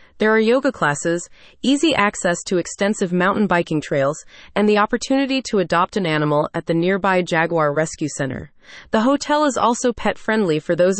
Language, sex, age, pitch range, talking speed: English, female, 30-49, 170-235 Hz, 175 wpm